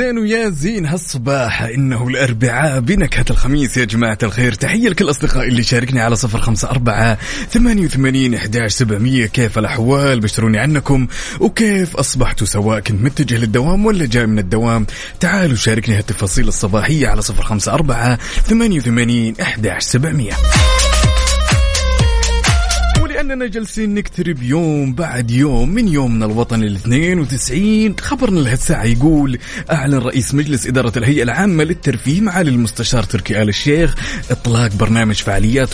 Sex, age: male, 20-39